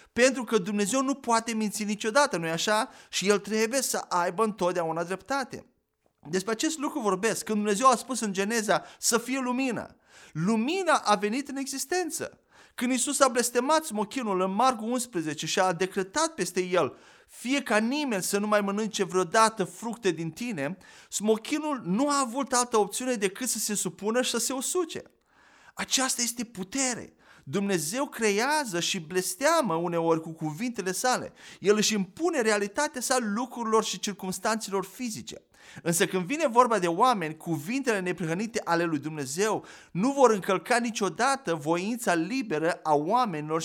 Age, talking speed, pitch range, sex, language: 30-49, 155 wpm, 185-250 Hz, male, Romanian